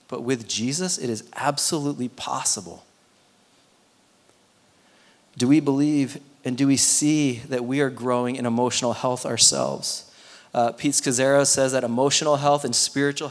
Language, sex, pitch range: English, male, 120-140 Hz